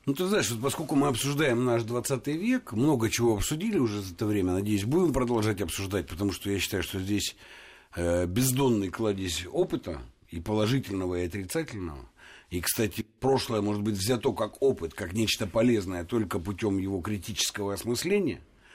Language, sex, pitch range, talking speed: Russian, male, 100-130 Hz, 160 wpm